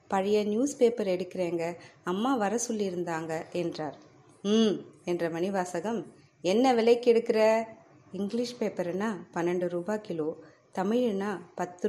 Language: Tamil